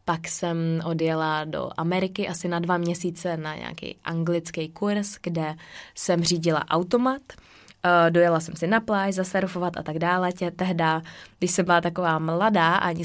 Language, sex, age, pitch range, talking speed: Czech, female, 20-39, 165-180 Hz, 150 wpm